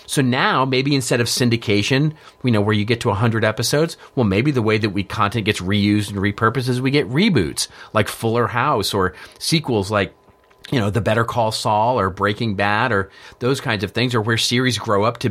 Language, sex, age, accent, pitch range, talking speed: English, male, 40-59, American, 100-130 Hz, 215 wpm